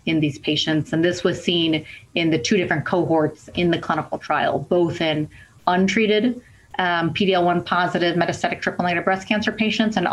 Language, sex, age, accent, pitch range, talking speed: English, female, 30-49, American, 155-185 Hz, 180 wpm